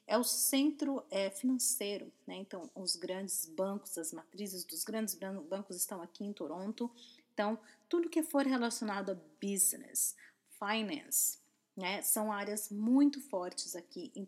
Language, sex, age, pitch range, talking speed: English, female, 30-49, 180-230 Hz, 140 wpm